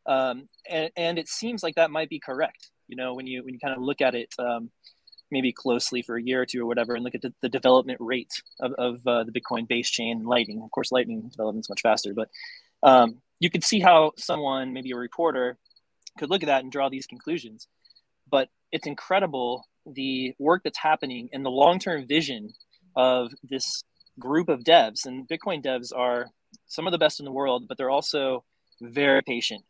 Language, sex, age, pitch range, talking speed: English, male, 20-39, 120-150 Hz, 210 wpm